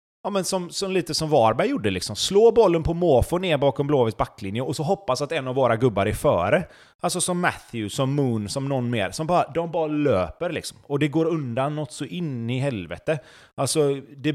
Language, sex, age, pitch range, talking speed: Swedish, male, 30-49, 120-165 Hz, 220 wpm